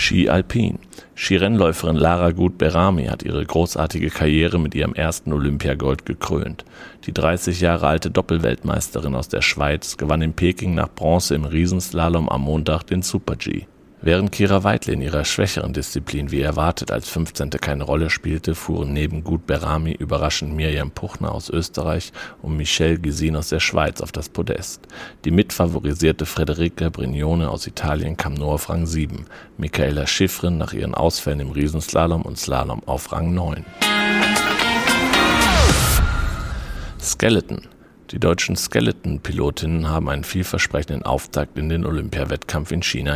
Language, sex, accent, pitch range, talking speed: German, male, German, 75-85 Hz, 140 wpm